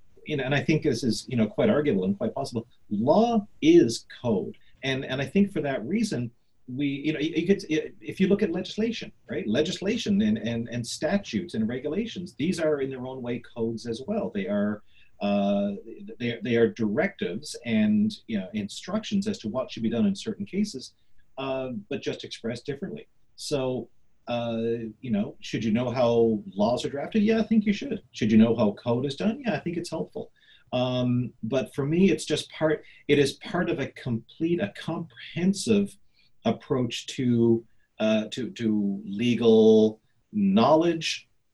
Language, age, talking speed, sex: English, 40-59, 180 wpm, male